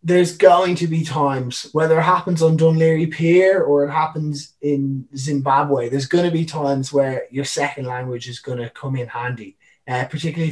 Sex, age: male, 20-39